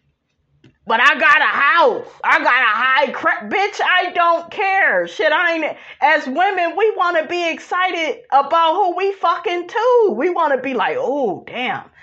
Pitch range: 240-360 Hz